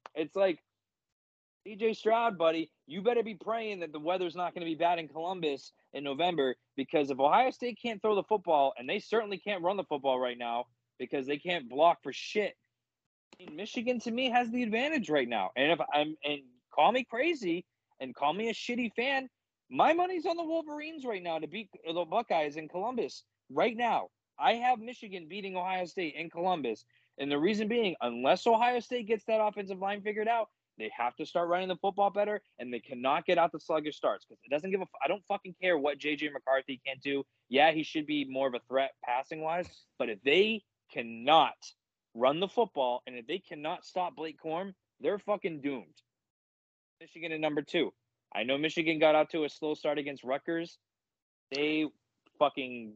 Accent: American